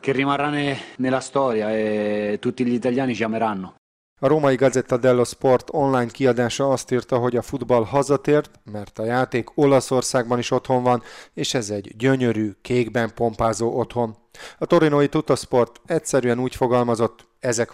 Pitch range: 115-130 Hz